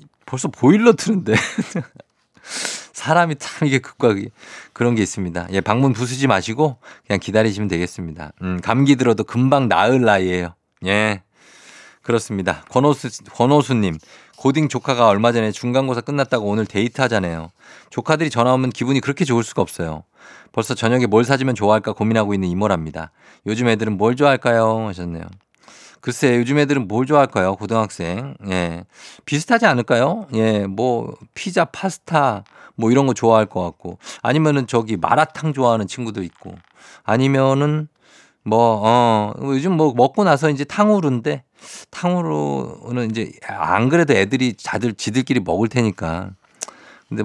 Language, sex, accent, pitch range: Korean, male, native, 100-135 Hz